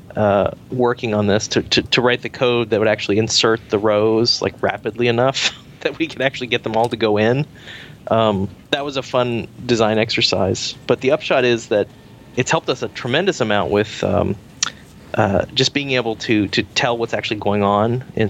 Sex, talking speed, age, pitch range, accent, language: male, 200 wpm, 30-49, 105-125 Hz, American, English